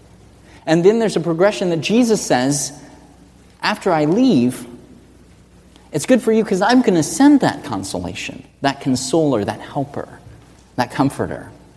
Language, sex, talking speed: English, male, 145 wpm